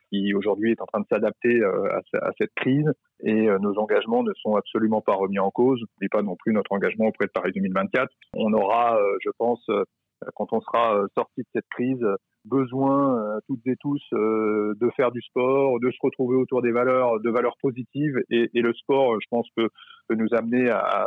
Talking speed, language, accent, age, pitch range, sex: 195 wpm, French, French, 30-49, 110-135 Hz, male